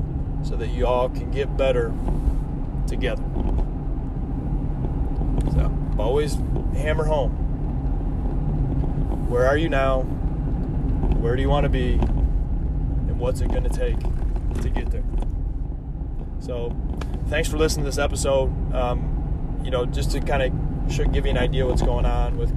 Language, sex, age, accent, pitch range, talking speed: English, male, 20-39, American, 80-130 Hz, 140 wpm